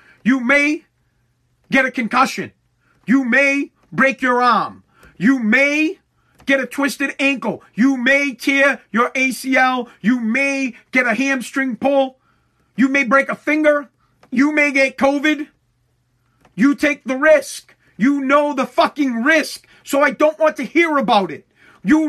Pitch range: 220-285 Hz